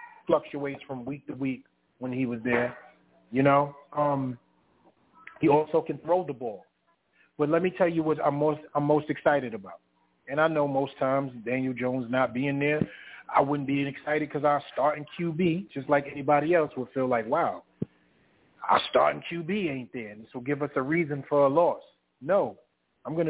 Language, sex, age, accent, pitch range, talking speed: English, male, 30-49, American, 140-180 Hz, 185 wpm